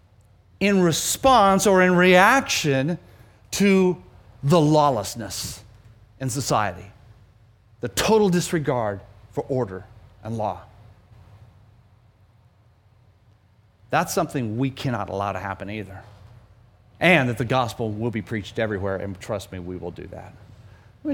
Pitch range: 105-175 Hz